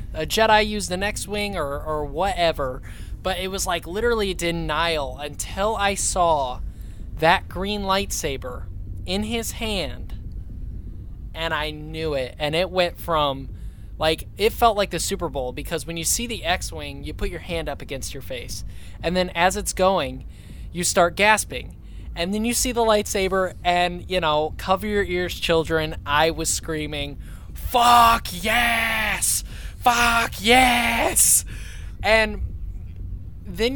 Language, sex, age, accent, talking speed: English, male, 20-39, American, 150 wpm